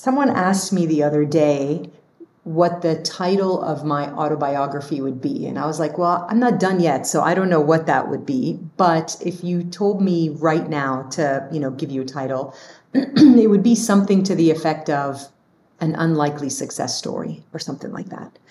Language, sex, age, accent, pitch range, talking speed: English, female, 30-49, American, 150-185 Hz, 200 wpm